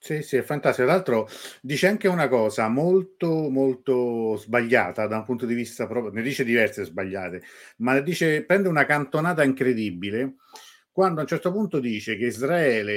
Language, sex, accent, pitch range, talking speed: Italian, male, native, 105-135 Hz, 165 wpm